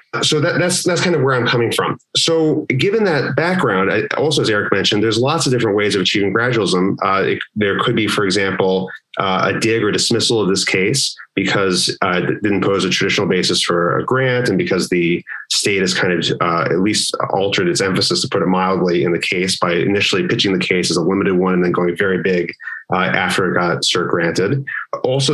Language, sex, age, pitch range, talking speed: English, male, 30-49, 95-125 Hz, 215 wpm